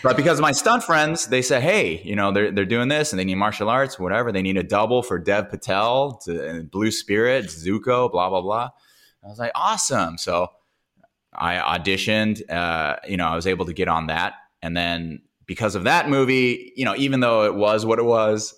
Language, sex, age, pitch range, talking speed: English, male, 20-39, 90-120 Hz, 215 wpm